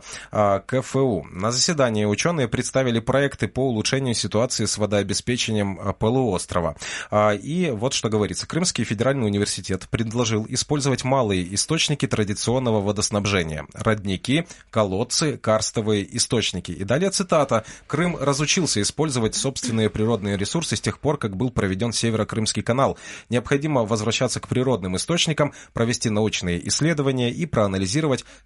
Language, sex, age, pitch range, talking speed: Russian, male, 30-49, 100-130 Hz, 120 wpm